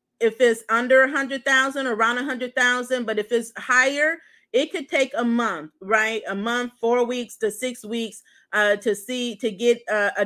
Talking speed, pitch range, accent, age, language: 185 wpm, 230-285 Hz, American, 30-49, English